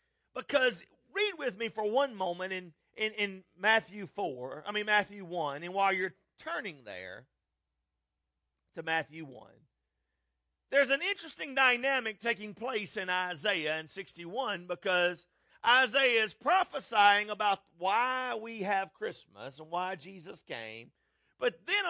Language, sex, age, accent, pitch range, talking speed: English, male, 40-59, American, 140-220 Hz, 135 wpm